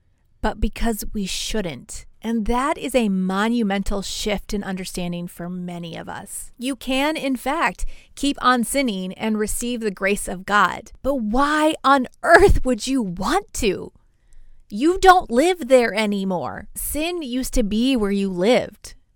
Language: English